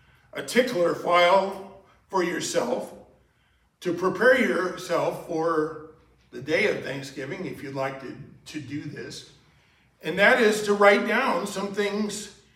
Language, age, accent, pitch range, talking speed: English, 50-69, American, 165-215 Hz, 135 wpm